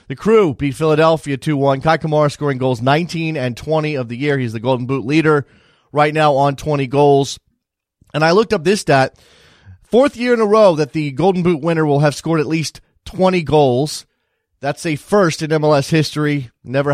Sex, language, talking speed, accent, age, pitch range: male, English, 195 wpm, American, 30-49, 130-160 Hz